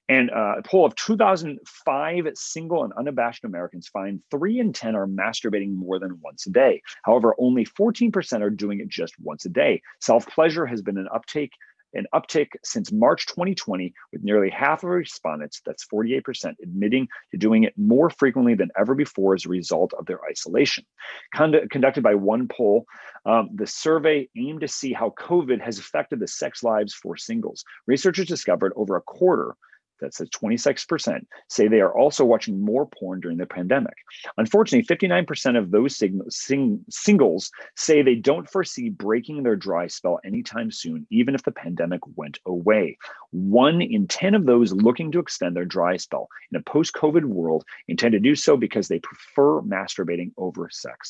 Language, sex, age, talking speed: English, male, 40-59, 170 wpm